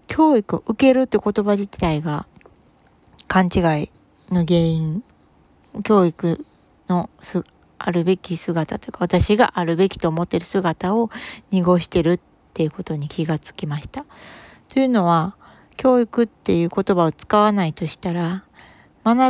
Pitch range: 165-210 Hz